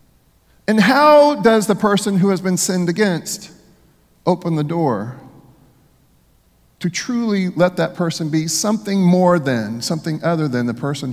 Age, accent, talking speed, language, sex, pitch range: 40-59, American, 145 wpm, English, male, 130-185 Hz